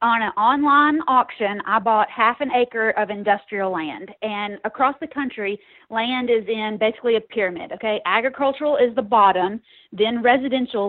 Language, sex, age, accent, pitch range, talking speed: English, female, 30-49, American, 205-260 Hz, 160 wpm